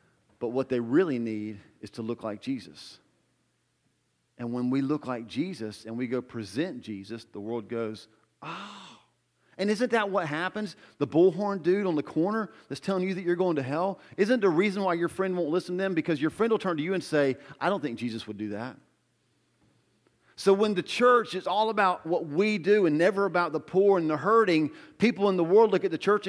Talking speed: 220 wpm